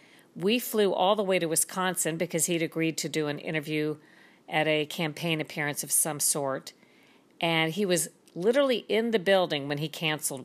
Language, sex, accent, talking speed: English, female, American, 180 wpm